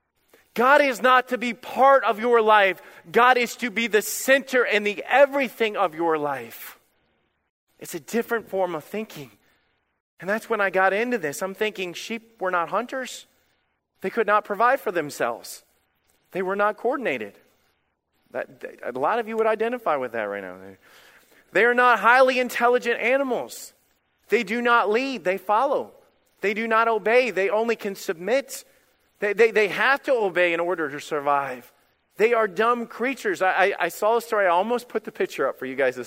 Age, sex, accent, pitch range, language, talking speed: 30-49, male, American, 165-240 Hz, English, 185 wpm